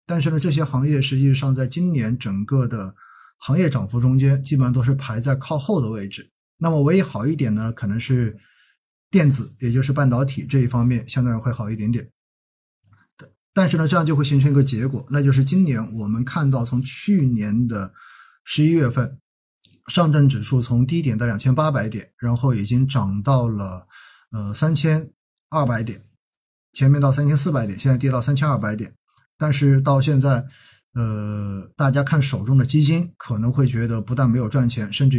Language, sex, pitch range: Chinese, male, 115-140 Hz